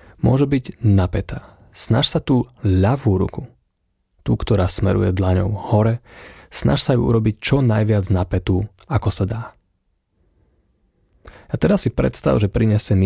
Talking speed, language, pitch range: 140 wpm, Slovak, 95-120 Hz